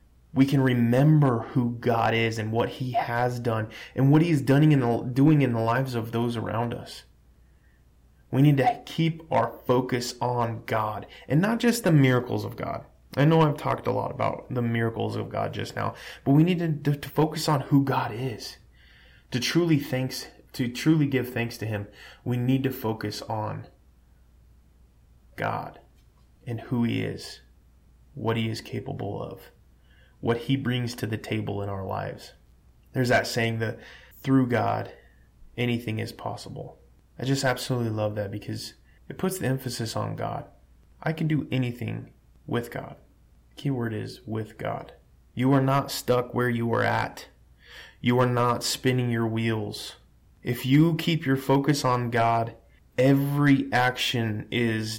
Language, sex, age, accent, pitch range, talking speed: English, male, 20-39, American, 105-130 Hz, 165 wpm